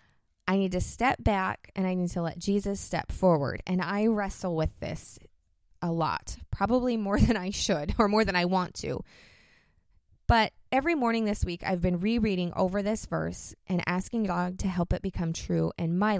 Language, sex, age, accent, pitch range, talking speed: English, female, 20-39, American, 170-210 Hz, 195 wpm